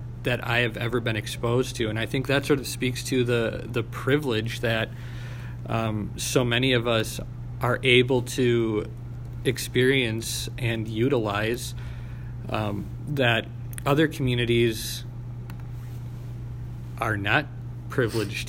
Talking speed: 120 wpm